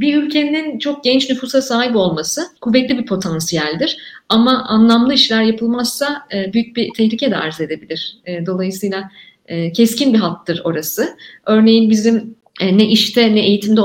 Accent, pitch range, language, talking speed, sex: native, 180-225 Hz, Turkish, 135 wpm, female